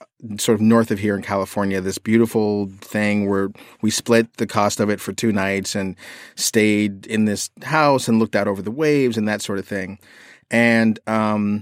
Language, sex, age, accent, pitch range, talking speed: English, male, 30-49, American, 105-120 Hz, 195 wpm